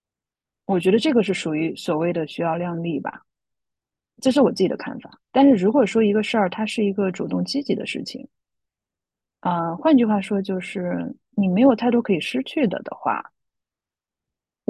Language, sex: Chinese, female